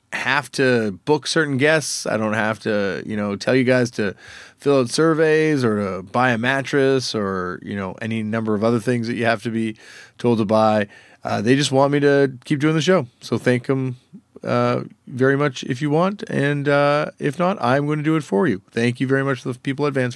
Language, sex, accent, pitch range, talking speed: English, male, American, 105-145 Hz, 235 wpm